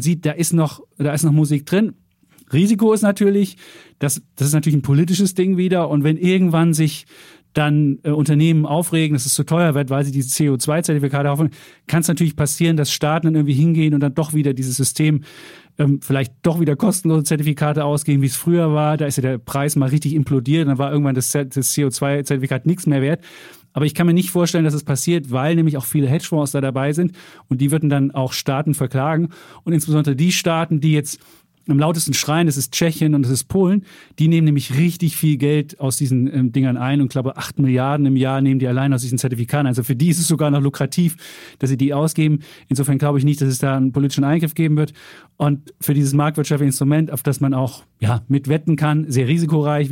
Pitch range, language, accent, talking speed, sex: 140-160 Hz, German, German, 220 wpm, male